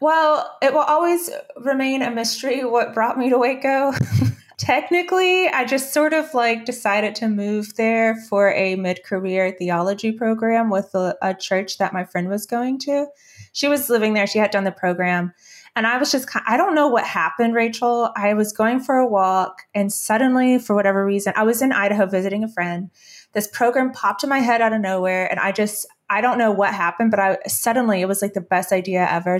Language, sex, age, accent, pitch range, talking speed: English, female, 20-39, American, 185-235 Hz, 205 wpm